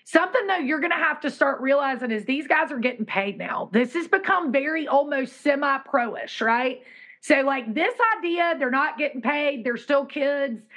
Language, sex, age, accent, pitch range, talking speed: English, female, 30-49, American, 245-305 Hz, 190 wpm